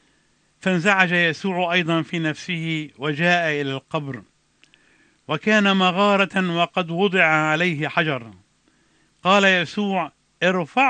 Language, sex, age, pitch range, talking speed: English, male, 50-69, 160-200 Hz, 95 wpm